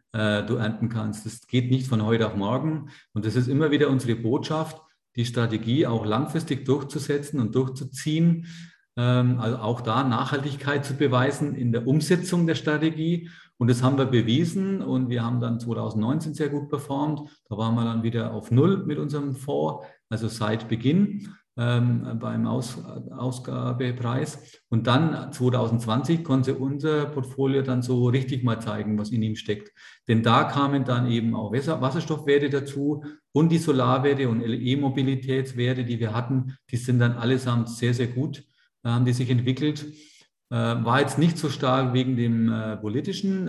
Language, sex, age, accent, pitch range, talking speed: German, male, 40-59, German, 115-145 Hz, 160 wpm